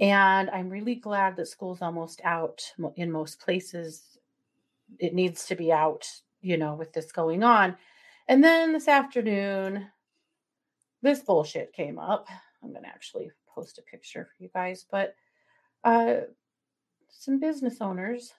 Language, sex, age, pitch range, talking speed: English, female, 30-49, 165-235 Hz, 145 wpm